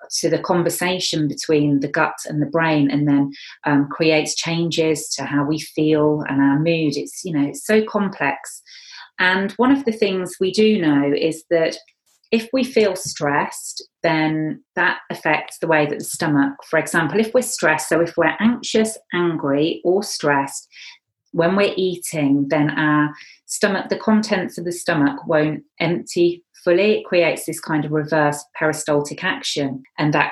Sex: female